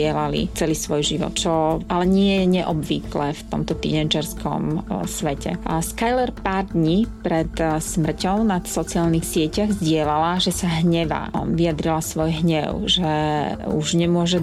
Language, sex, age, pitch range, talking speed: Slovak, female, 30-49, 155-180 Hz, 130 wpm